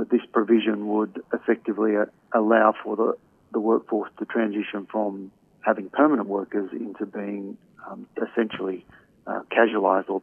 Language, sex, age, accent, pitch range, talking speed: English, male, 40-59, Australian, 105-110 Hz, 135 wpm